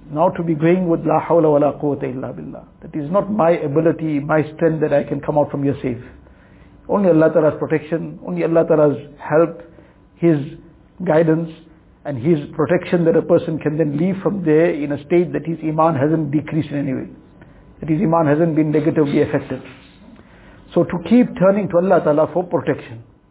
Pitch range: 145-170 Hz